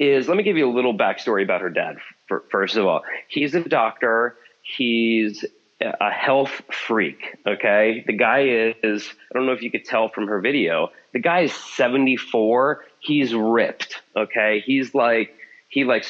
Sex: male